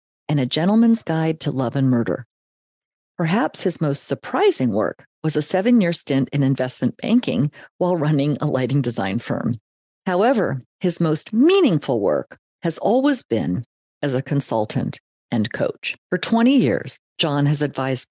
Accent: American